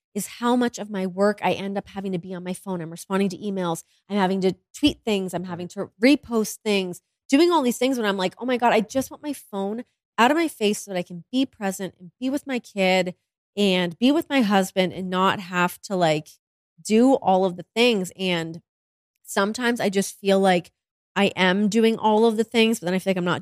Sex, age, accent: female, 20-39, American